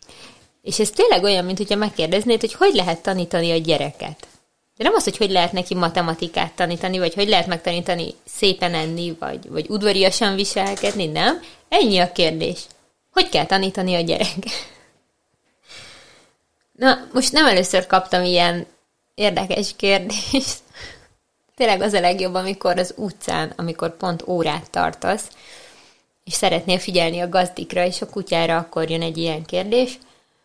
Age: 20-39